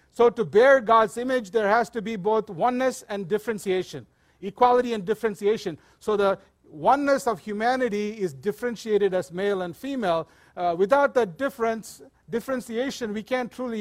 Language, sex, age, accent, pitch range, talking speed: English, male, 50-69, Indian, 200-235 Hz, 150 wpm